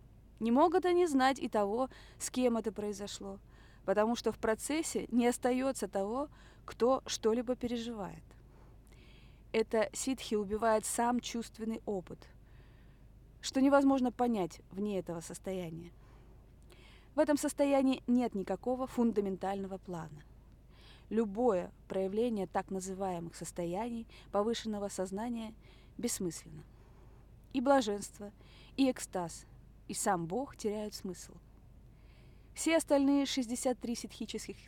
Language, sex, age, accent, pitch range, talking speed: Russian, female, 20-39, native, 185-245 Hz, 105 wpm